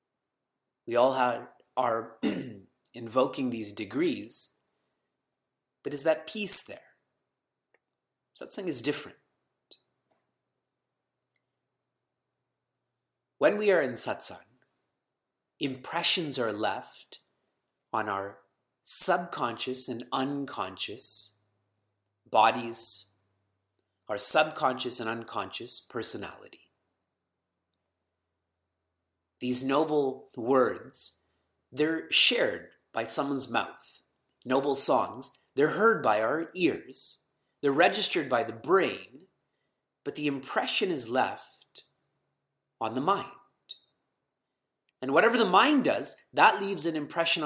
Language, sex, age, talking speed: English, male, 30-49, 90 wpm